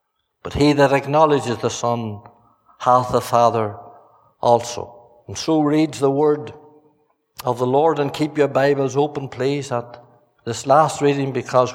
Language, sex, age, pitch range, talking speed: English, male, 60-79, 135-160 Hz, 150 wpm